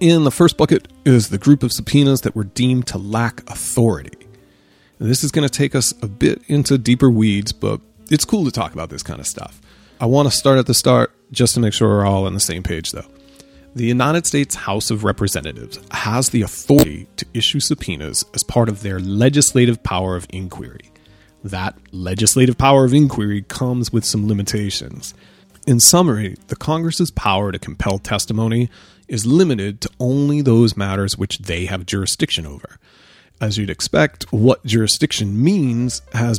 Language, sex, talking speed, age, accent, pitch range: English, male, 180 wpm, 30-49, American, 100-130 Hz